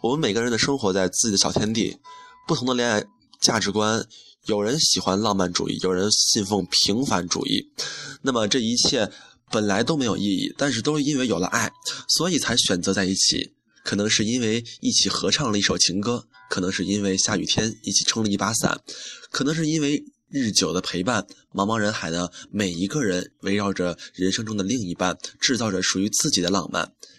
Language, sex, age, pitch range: Chinese, male, 20-39, 100-135 Hz